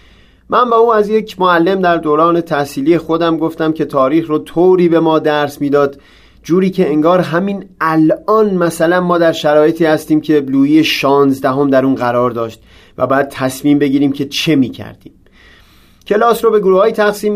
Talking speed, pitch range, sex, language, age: 175 wpm, 140-180 Hz, male, Persian, 30-49